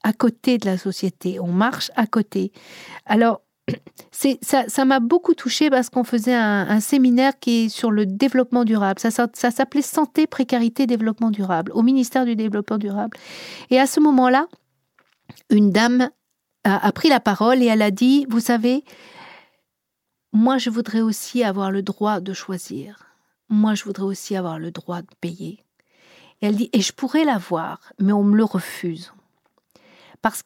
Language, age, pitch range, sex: French, 50-69, 205-260 Hz, female